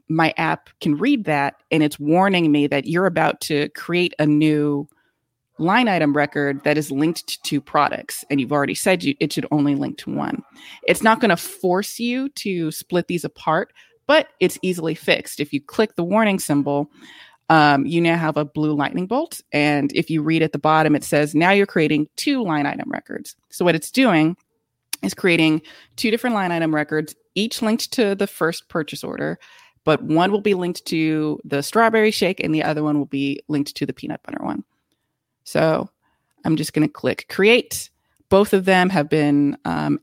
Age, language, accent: 20-39, English, American